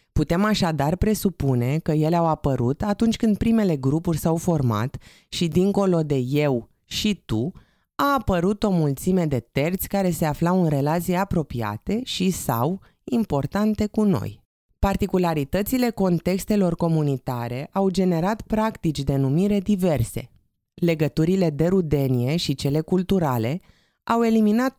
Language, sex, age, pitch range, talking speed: Romanian, female, 20-39, 140-195 Hz, 125 wpm